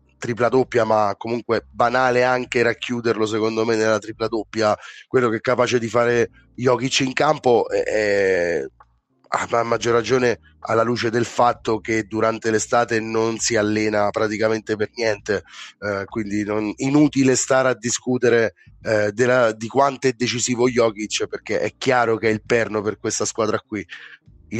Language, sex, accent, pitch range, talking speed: Italian, male, native, 110-130 Hz, 155 wpm